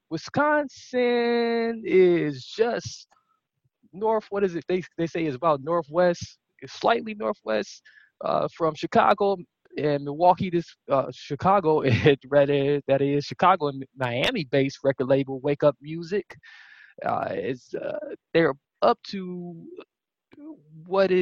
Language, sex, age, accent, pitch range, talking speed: English, male, 20-39, American, 135-180 Hz, 125 wpm